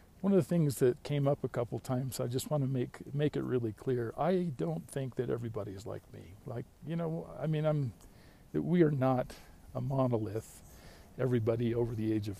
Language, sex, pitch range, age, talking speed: English, male, 110-135 Hz, 50-69, 220 wpm